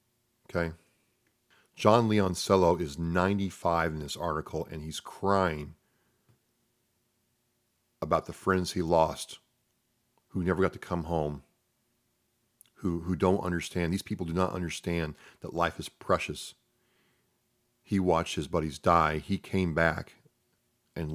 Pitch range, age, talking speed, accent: 85-115 Hz, 40-59, 125 wpm, American